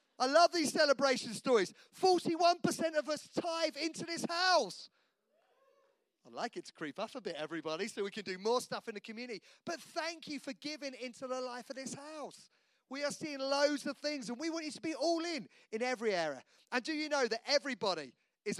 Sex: male